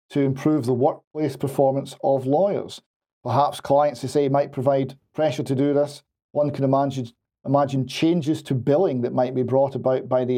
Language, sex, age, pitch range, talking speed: English, male, 40-59, 130-155 Hz, 180 wpm